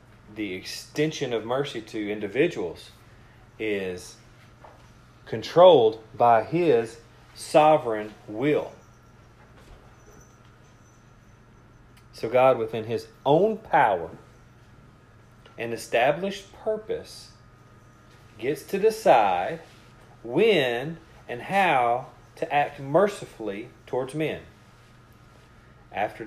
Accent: American